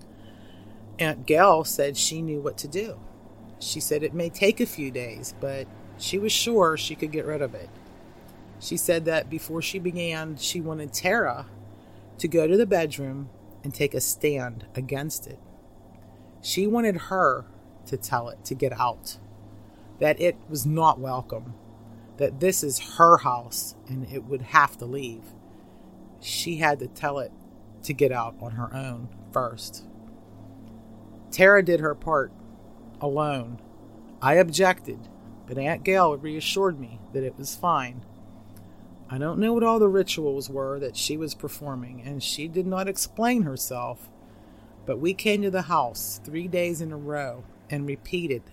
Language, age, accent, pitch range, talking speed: English, 40-59, American, 110-160 Hz, 160 wpm